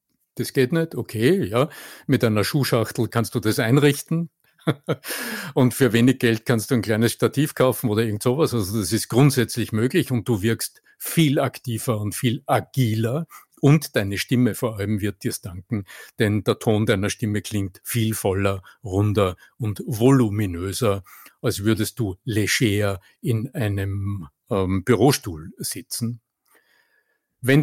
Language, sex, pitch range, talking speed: German, male, 105-130 Hz, 150 wpm